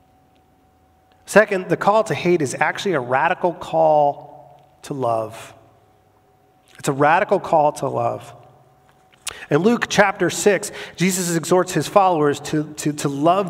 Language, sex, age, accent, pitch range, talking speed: English, male, 40-59, American, 140-200 Hz, 135 wpm